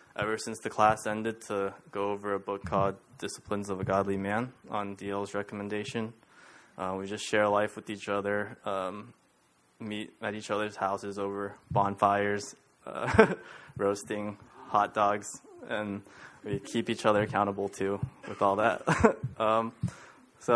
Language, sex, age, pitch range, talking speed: English, male, 20-39, 100-115 Hz, 150 wpm